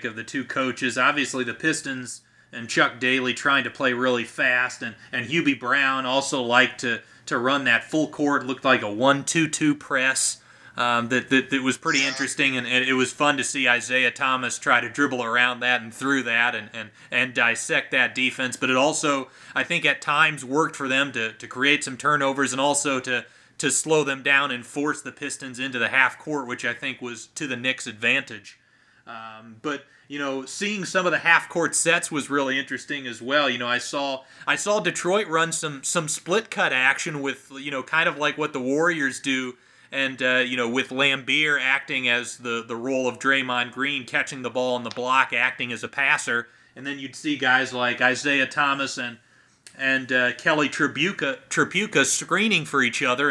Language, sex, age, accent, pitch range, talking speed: English, male, 30-49, American, 125-145 Hz, 200 wpm